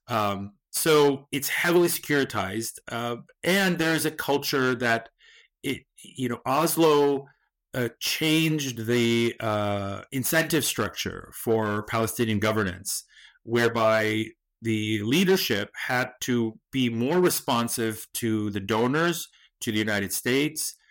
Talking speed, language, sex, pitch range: 110 wpm, English, male, 110-135 Hz